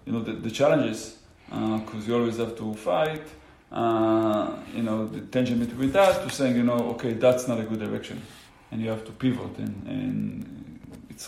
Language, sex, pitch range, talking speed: English, male, 110-130 Hz, 195 wpm